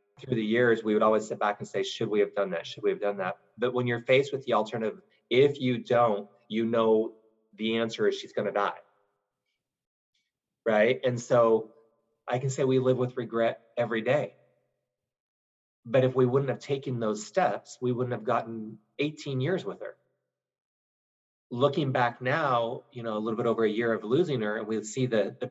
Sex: male